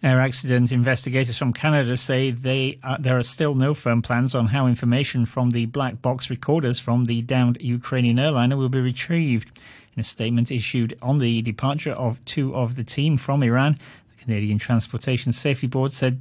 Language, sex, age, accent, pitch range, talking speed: English, male, 40-59, British, 120-145 Hz, 185 wpm